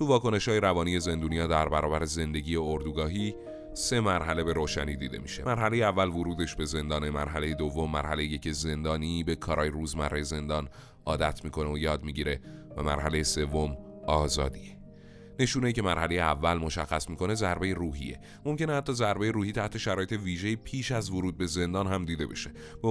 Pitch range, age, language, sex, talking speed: 75-95 Hz, 30-49, Persian, male, 165 wpm